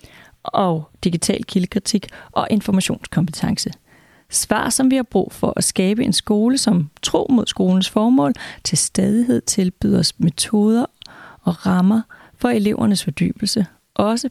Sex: female